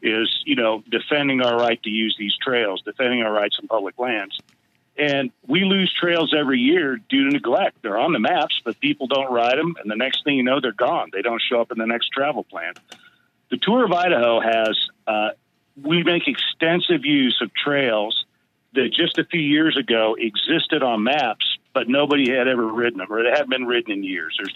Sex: male